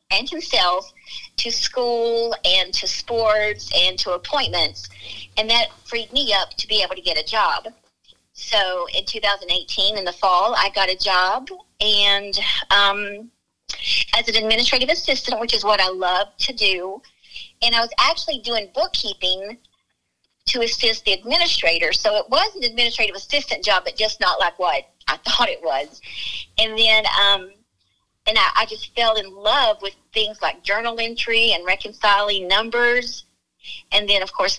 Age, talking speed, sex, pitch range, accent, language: 50-69, 160 wpm, female, 190-235 Hz, American, English